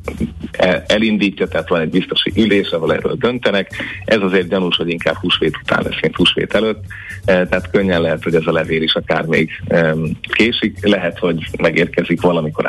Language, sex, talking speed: Hungarian, male, 165 wpm